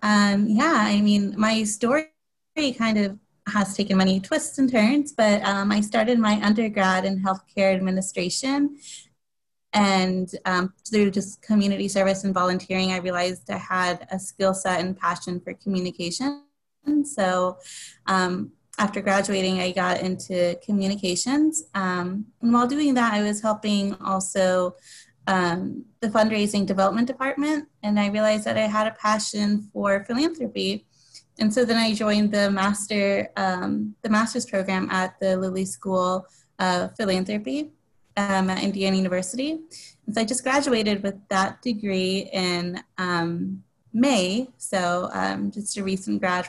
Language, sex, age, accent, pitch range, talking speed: English, female, 20-39, American, 185-220 Hz, 145 wpm